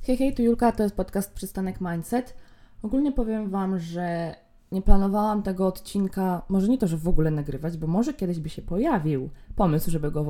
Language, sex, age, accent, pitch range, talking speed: Polish, female, 20-39, native, 165-205 Hz, 200 wpm